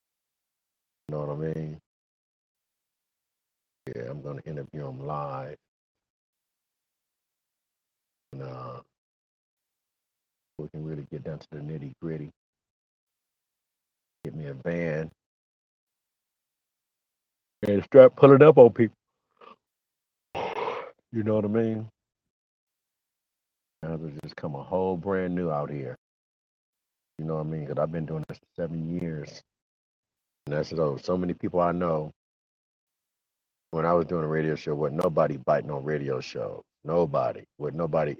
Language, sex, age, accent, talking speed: English, male, 50-69, American, 130 wpm